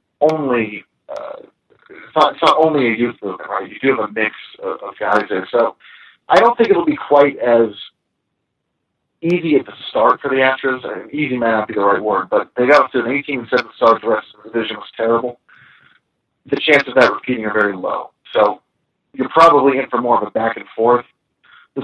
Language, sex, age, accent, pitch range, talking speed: English, male, 40-59, American, 110-140 Hz, 215 wpm